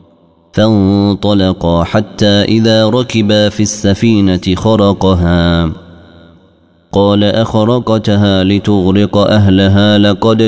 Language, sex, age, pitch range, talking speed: Arabic, male, 30-49, 90-110 Hz, 70 wpm